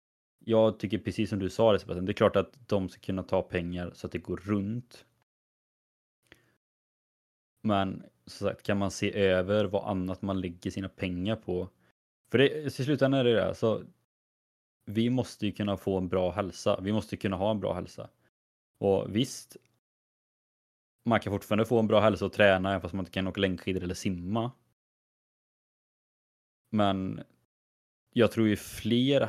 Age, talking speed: 20-39, 165 wpm